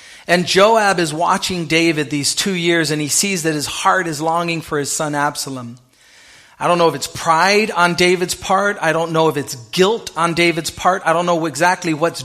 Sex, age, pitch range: male, 30-49, 150-190 Hz